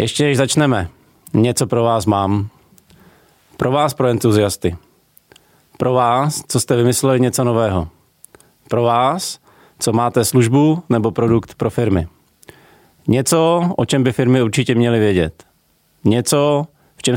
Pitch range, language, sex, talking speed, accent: 110-135 Hz, Czech, male, 135 wpm, native